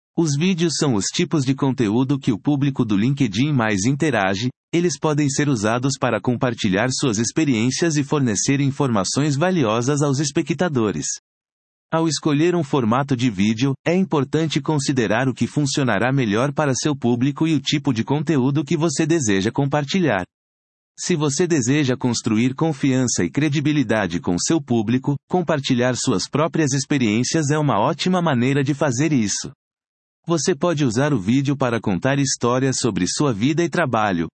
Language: Portuguese